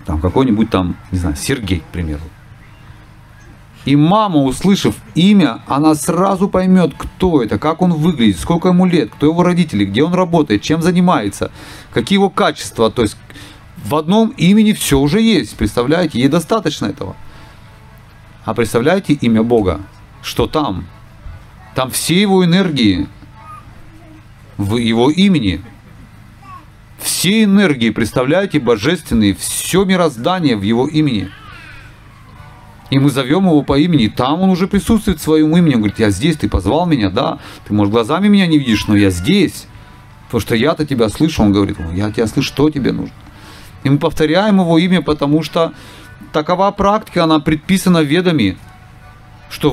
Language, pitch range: Russian, 110-170 Hz